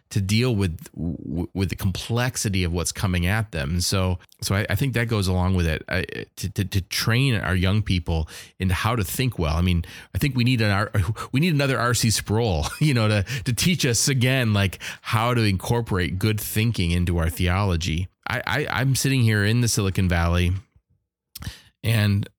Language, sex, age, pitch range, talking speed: English, male, 30-49, 90-115 Hz, 195 wpm